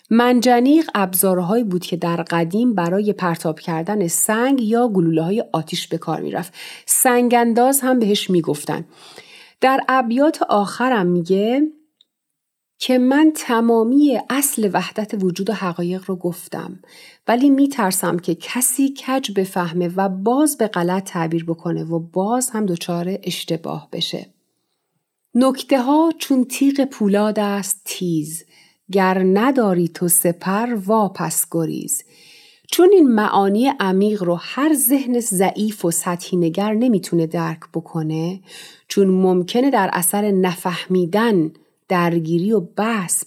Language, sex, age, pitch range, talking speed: Persian, female, 40-59, 175-245 Hz, 120 wpm